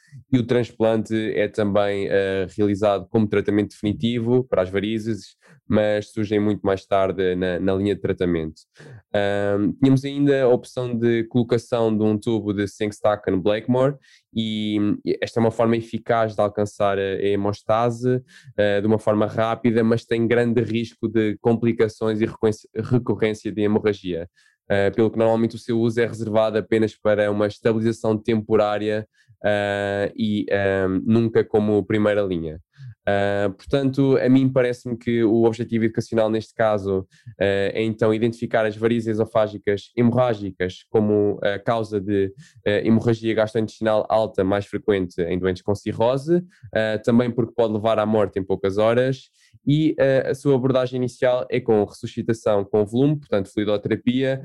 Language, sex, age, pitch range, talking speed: Portuguese, male, 20-39, 105-120 Hz, 145 wpm